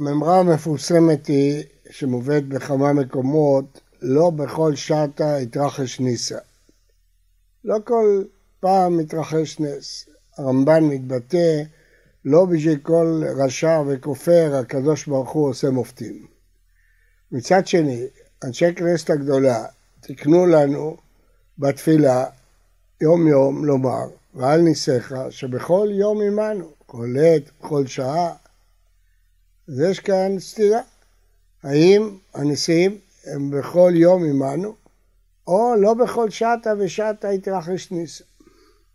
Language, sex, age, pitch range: Hebrew, male, 60-79, 135-180 Hz